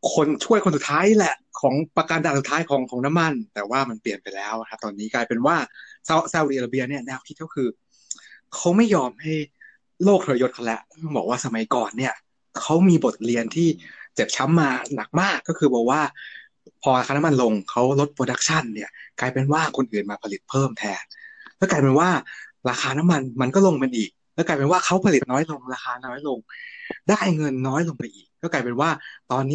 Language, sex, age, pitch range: English, male, 20-39, 130-175 Hz